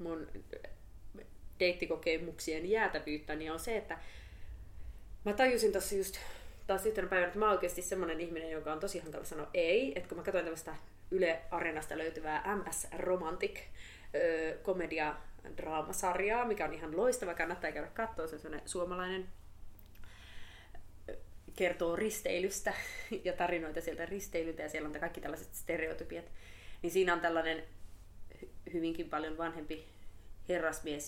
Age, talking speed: 20-39, 120 wpm